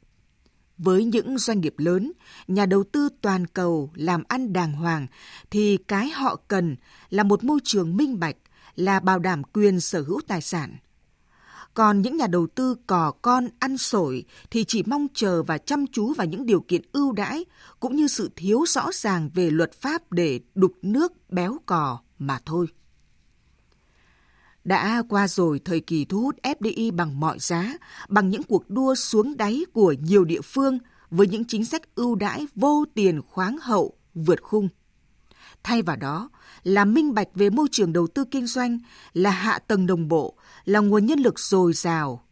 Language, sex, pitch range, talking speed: Vietnamese, female, 175-240 Hz, 180 wpm